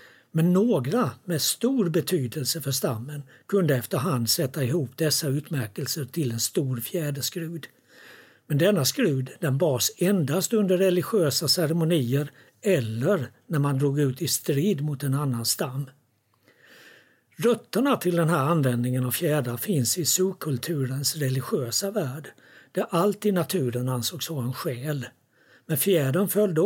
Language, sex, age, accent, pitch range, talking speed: Swedish, male, 60-79, native, 130-180 Hz, 135 wpm